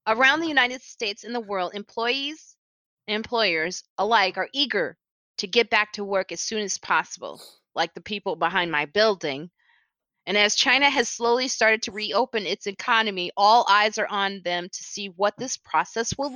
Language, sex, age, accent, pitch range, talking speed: English, female, 30-49, American, 185-240 Hz, 180 wpm